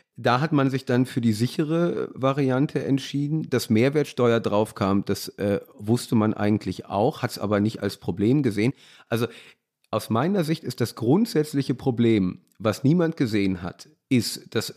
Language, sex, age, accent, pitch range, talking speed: German, male, 30-49, German, 110-145 Hz, 165 wpm